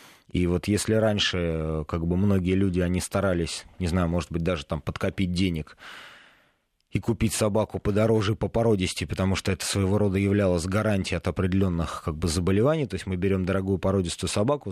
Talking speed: 175 wpm